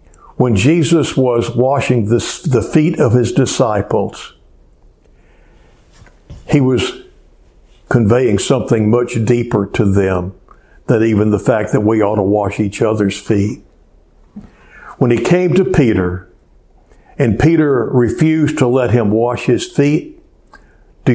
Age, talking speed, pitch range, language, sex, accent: 60-79, 125 wpm, 105-145 Hz, English, male, American